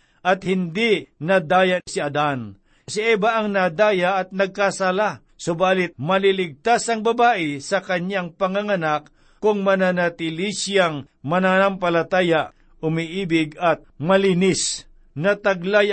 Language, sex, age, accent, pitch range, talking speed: Filipino, male, 60-79, native, 165-205 Hz, 100 wpm